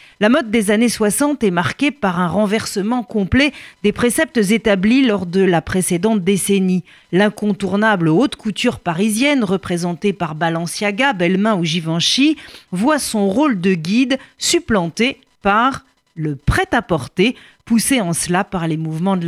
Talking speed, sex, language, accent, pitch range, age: 140 wpm, female, French, French, 175-240 Hz, 40-59